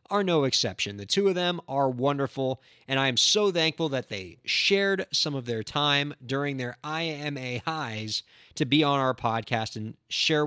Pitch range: 130-195 Hz